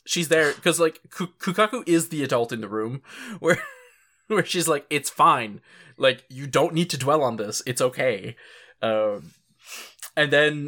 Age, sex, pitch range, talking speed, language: 20-39, male, 115-150 Hz, 170 wpm, English